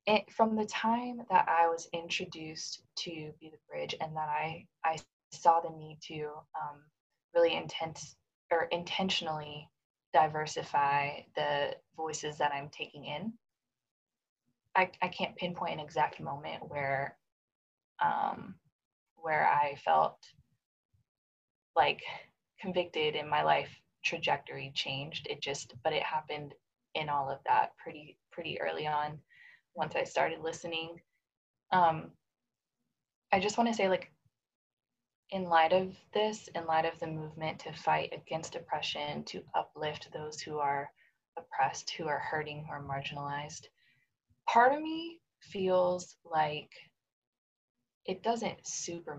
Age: 20-39